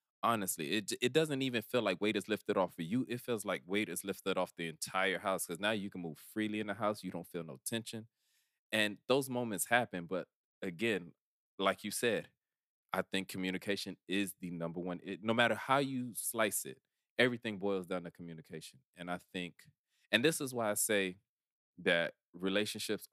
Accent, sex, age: American, male, 20-39